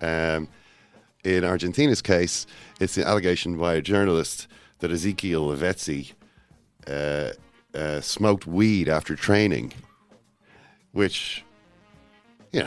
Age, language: 40-59, English